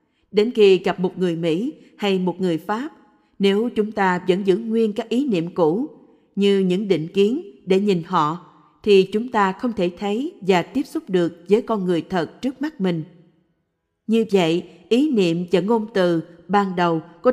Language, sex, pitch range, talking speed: Vietnamese, female, 170-220 Hz, 185 wpm